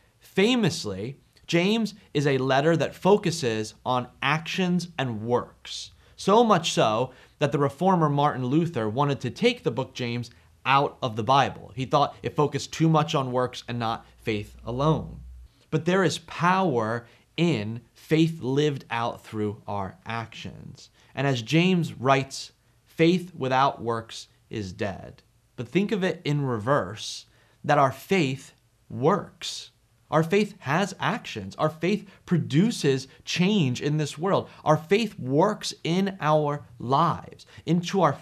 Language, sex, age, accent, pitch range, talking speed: English, male, 30-49, American, 115-165 Hz, 140 wpm